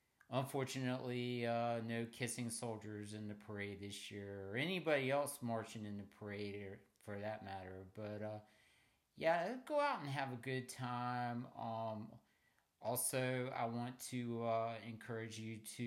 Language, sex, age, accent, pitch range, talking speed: English, male, 50-69, American, 105-115 Hz, 150 wpm